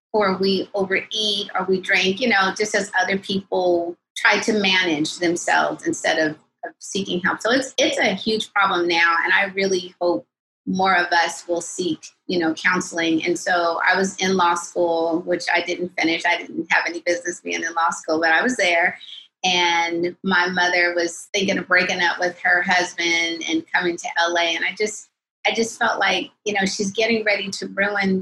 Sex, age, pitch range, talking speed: female, 30-49, 175-210 Hz, 200 wpm